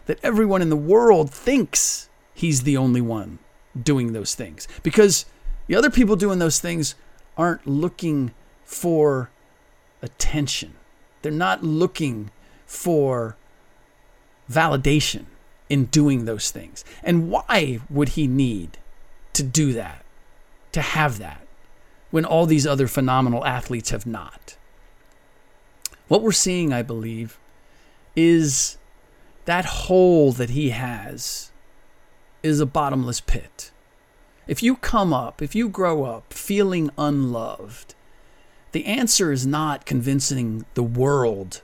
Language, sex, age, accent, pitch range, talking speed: English, male, 40-59, American, 120-165 Hz, 120 wpm